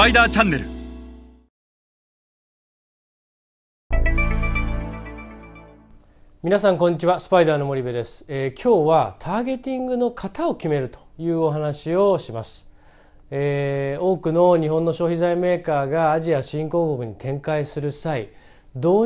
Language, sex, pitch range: Japanese, male, 120-170 Hz